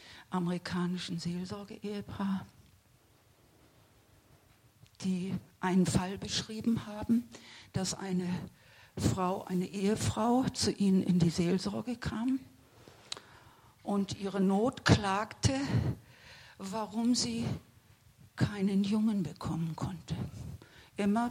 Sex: female